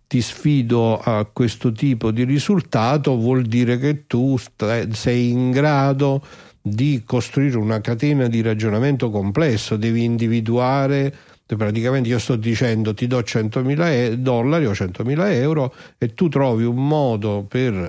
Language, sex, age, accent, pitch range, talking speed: Italian, male, 50-69, native, 105-135 Hz, 140 wpm